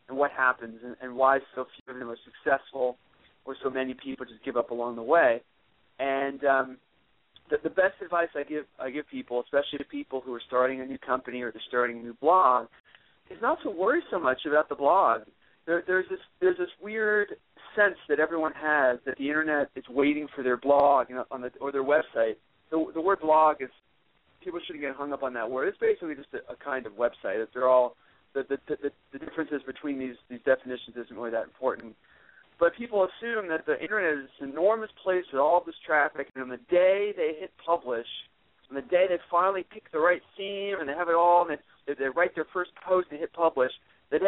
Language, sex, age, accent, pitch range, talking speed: English, male, 40-59, American, 130-180 Hz, 220 wpm